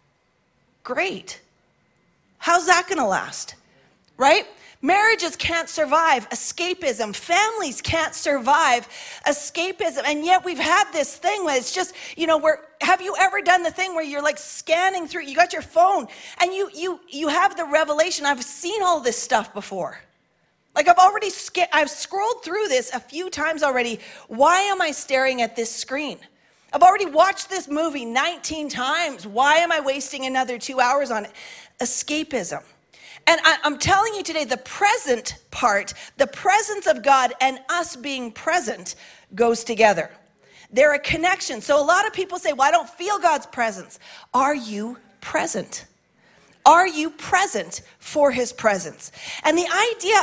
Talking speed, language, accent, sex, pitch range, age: 160 wpm, English, American, female, 270-360 Hz, 40-59